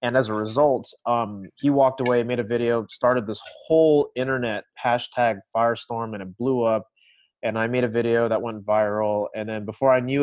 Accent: American